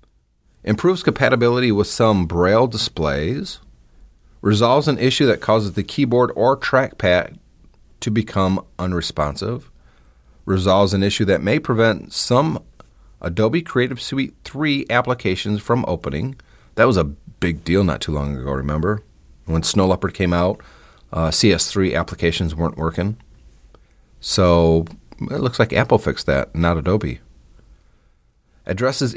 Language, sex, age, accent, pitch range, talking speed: English, male, 40-59, American, 80-115 Hz, 130 wpm